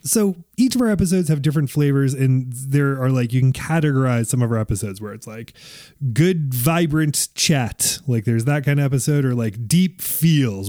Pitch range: 120-155 Hz